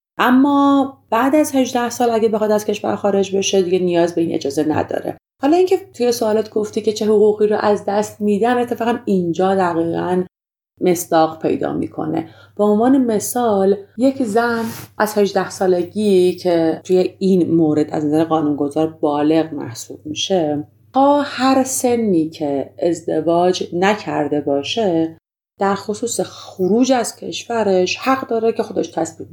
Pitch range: 155-215 Hz